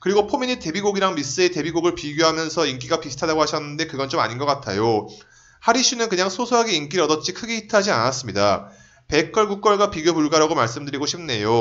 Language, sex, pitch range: Korean, male, 145-195 Hz